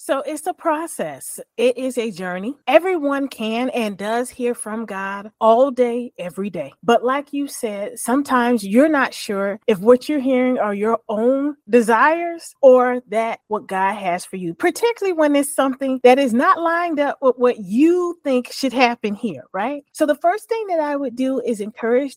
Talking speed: 185 wpm